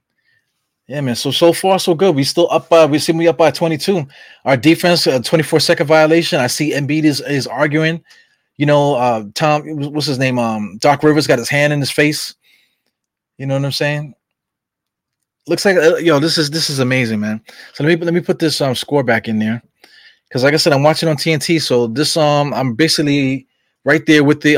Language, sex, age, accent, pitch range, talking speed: English, male, 20-39, American, 135-170 Hz, 225 wpm